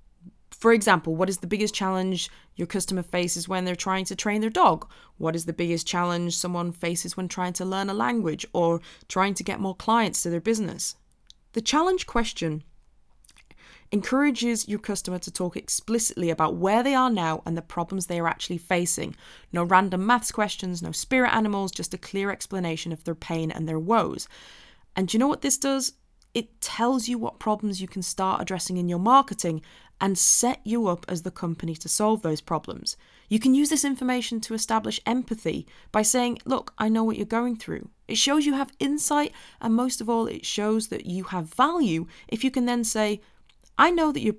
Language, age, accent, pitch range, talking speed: English, 20-39, British, 170-230 Hz, 200 wpm